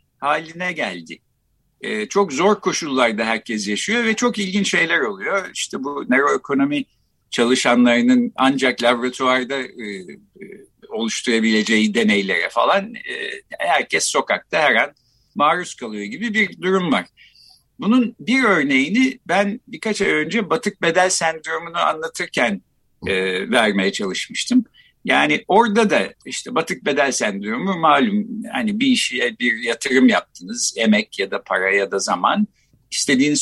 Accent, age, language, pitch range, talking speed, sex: native, 60-79, Turkish, 160-235 Hz, 125 wpm, male